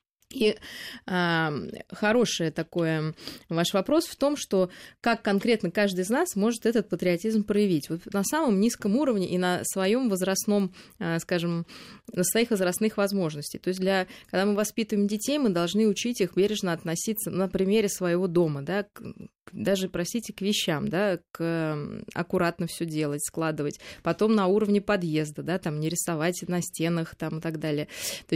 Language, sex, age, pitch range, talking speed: Russian, female, 20-39, 165-205 Hz, 165 wpm